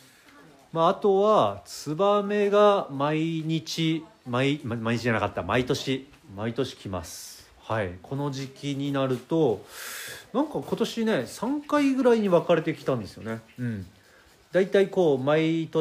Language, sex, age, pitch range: Japanese, male, 40-59, 110-150 Hz